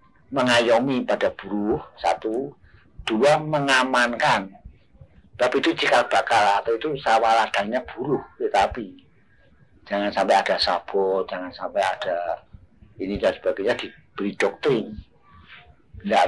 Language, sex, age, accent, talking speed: Indonesian, male, 50-69, native, 105 wpm